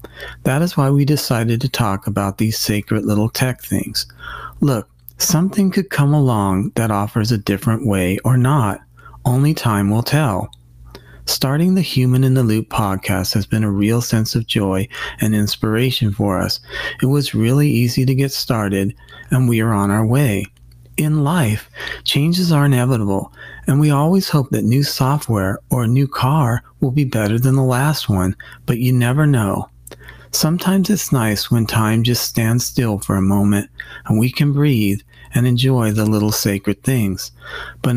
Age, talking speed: 40-59, 170 wpm